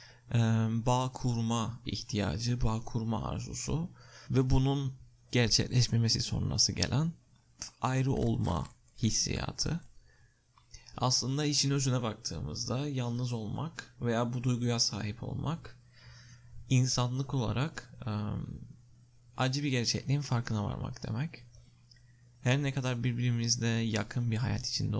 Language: Turkish